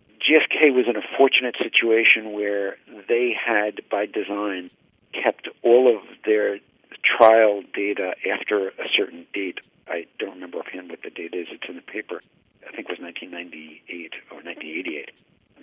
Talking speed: 155 wpm